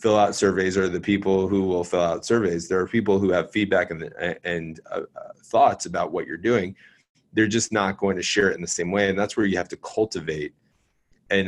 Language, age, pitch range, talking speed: English, 30-49, 90-110 Hz, 230 wpm